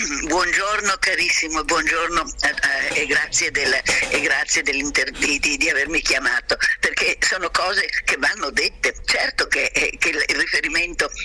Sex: female